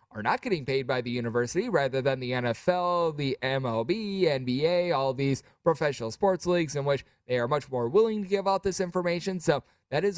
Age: 20-39